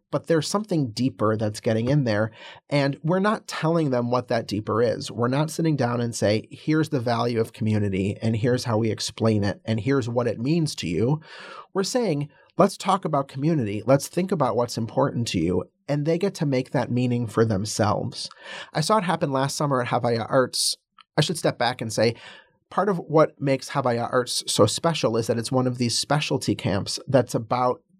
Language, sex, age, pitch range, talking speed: English, male, 30-49, 115-145 Hz, 205 wpm